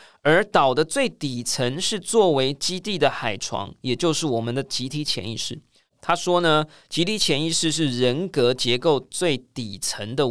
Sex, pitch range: male, 125-180 Hz